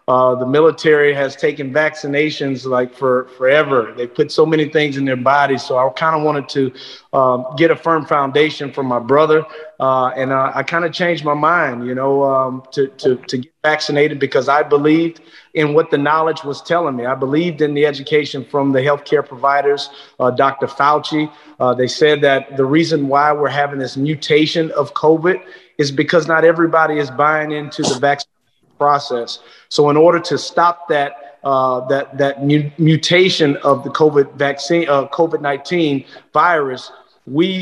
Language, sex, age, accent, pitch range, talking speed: English, male, 30-49, American, 135-155 Hz, 180 wpm